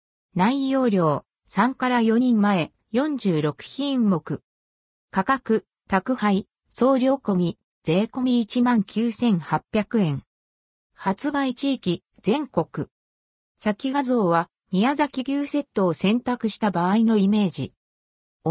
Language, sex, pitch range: Japanese, female, 170-250 Hz